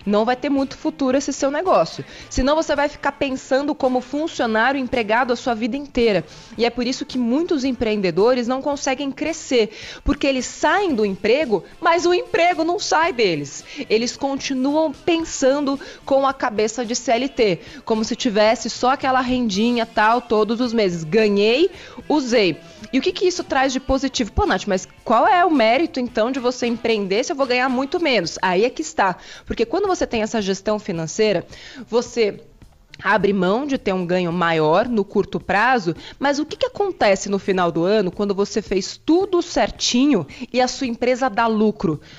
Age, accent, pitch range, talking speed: 20-39, Brazilian, 210-275 Hz, 185 wpm